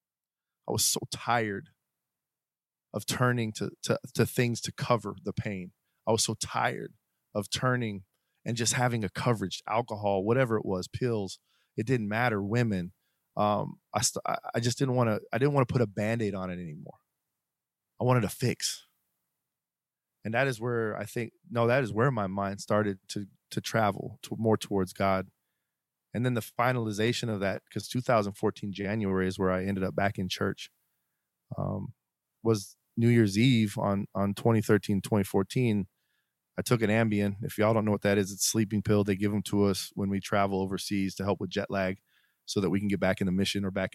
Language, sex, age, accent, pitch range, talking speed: English, male, 20-39, American, 100-115 Hz, 195 wpm